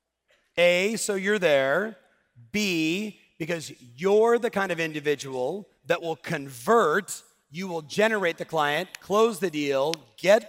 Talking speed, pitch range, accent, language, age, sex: 130 wpm, 150-190 Hz, American, English, 40-59, male